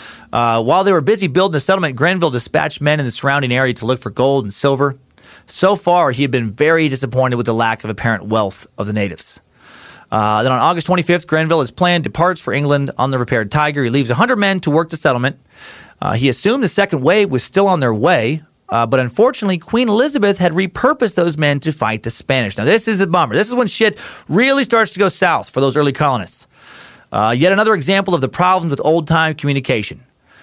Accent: American